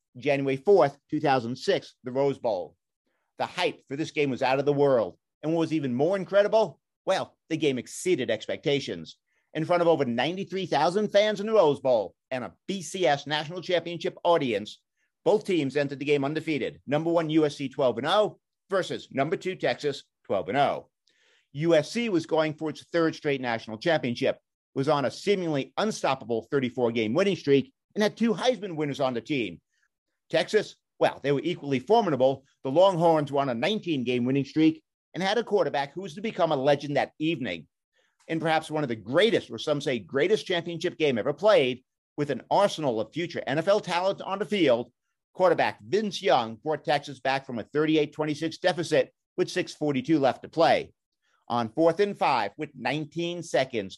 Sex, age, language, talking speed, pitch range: male, 50-69, English, 170 wpm, 135-175 Hz